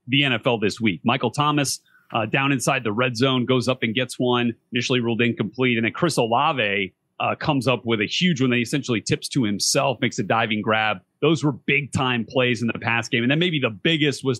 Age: 30-49